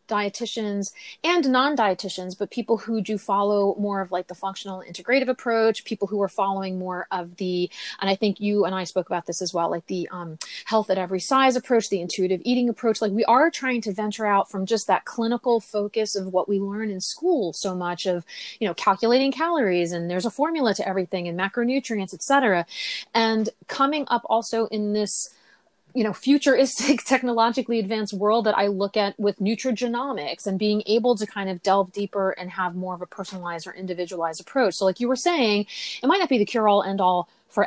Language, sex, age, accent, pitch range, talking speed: English, female, 30-49, American, 185-230 Hz, 205 wpm